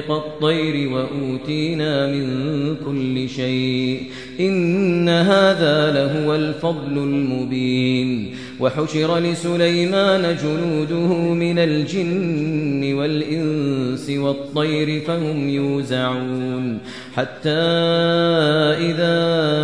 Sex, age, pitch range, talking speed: male, 30-49, 140-165 Hz, 60 wpm